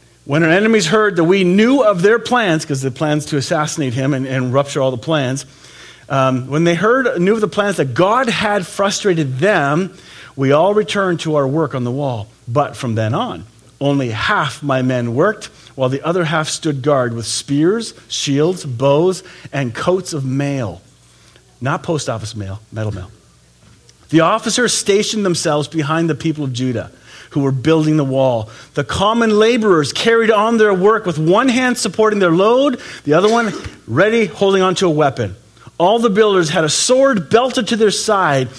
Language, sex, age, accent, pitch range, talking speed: English, male, 40-59, American, 135-210 Hz, 185 wpm